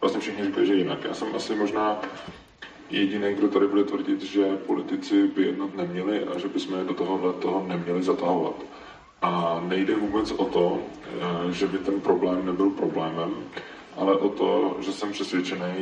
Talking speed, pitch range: 165 wpm, 90-100 Hz